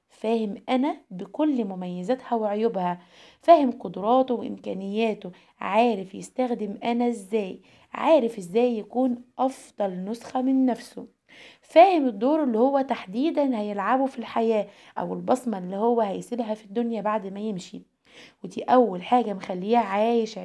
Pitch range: 205-250 Hz